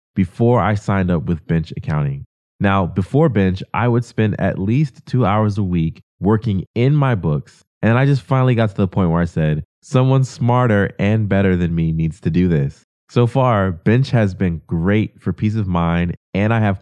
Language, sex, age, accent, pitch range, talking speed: English, male, 20-39, American, 90-125 Hz, 205 wpm